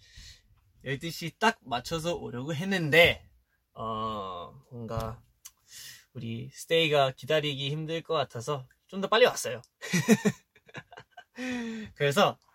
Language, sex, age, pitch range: Korean, male, 20-39, 120-175 Hz